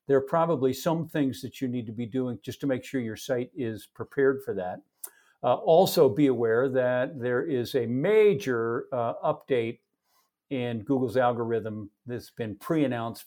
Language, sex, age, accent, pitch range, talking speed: English, male, 50-69, American, 115-140 Hz, 170 wpm